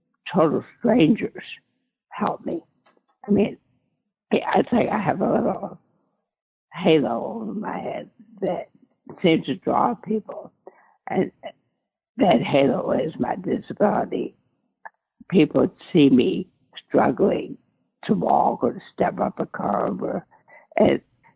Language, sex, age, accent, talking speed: English, female, 60-79, American, 110 wpm